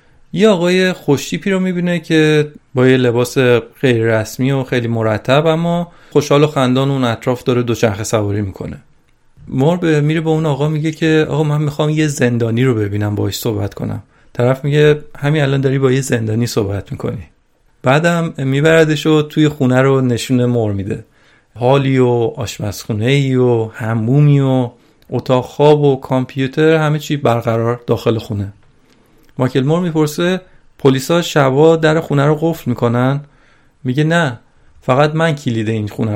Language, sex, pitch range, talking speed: Persian, male, 120-155 Hz, 155 wpm